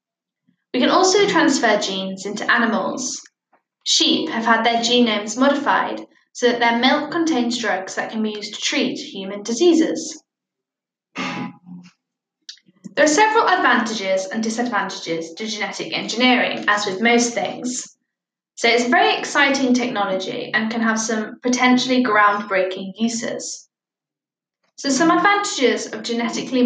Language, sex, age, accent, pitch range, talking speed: English, female, 10-29, British, 215-285 Hz, 130 wpm